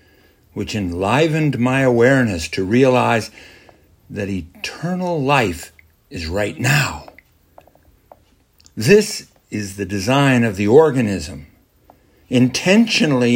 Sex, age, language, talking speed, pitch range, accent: male, 60-79, English, 90 wpm, 85-110 Hz, American